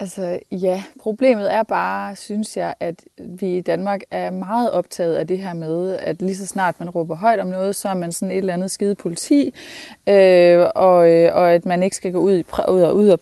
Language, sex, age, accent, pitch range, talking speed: Danish, female, 20-39, native, 180-215 Hz, 215 wpm